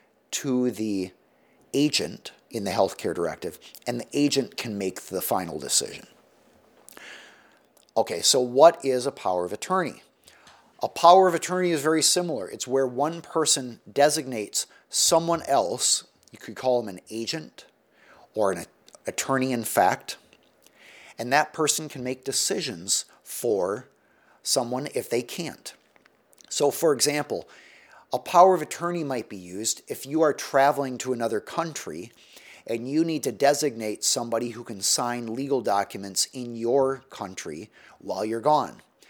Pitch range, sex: 115-155 Hz, male